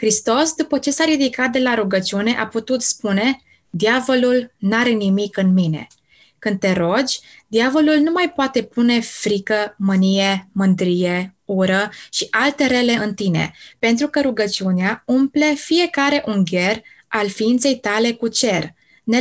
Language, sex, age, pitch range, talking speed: Romanian, female, 20-39, 205-260 Hz, 140 wpm